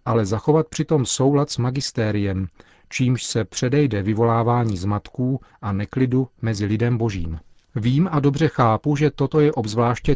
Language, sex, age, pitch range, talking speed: Czech, male, 40-59, 105-130 Hz, 140 wpm